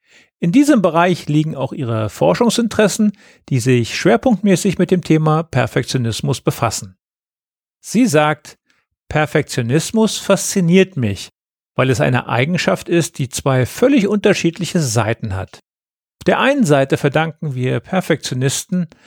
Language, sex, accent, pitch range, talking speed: German, male, German, 130-185 Hz, 120 wpm